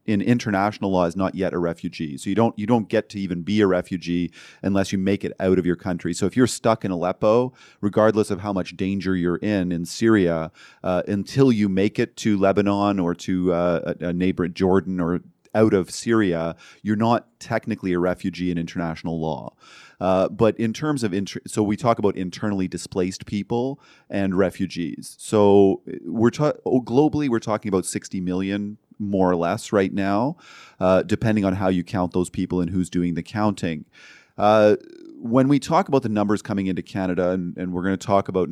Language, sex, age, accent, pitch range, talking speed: English, male, 30-49, American, 90-105 Hz, 200 wpm